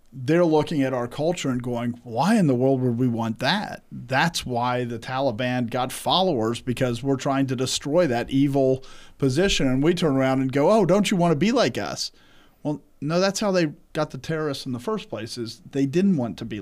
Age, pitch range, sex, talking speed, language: 40-59, 120-155 Hz, male, 220 wpm, English